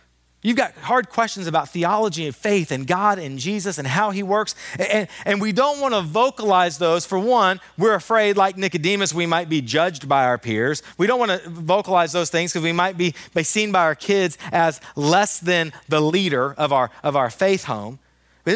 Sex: male